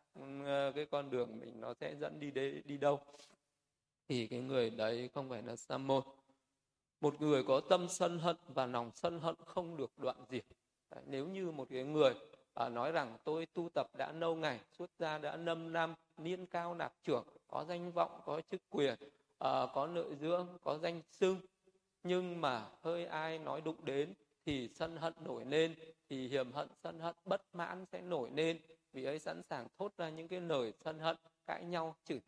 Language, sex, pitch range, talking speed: Vietnamese, male, 135-170 Hz, 195 wpm